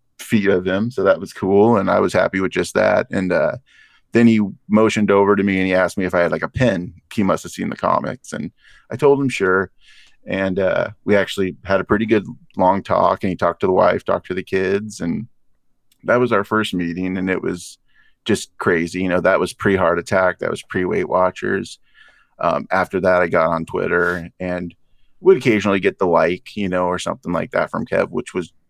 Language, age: English, 30-49